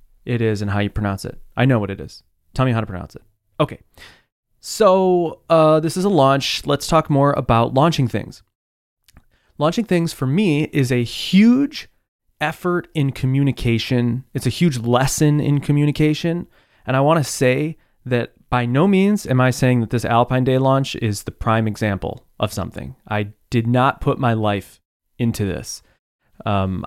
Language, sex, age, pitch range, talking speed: English, male, 20-39, 100-140 Hz, 175 wpm